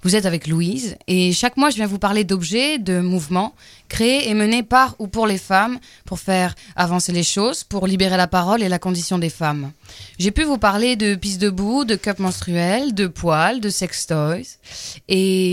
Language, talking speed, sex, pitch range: French, 205 wpm, female, 180-230 Hz